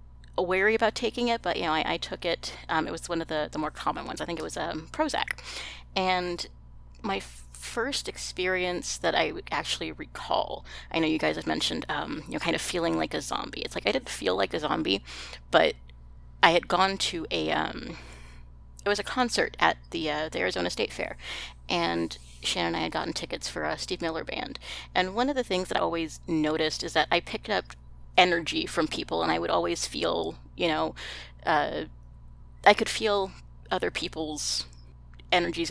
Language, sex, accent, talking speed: English, female, American, 205 wpm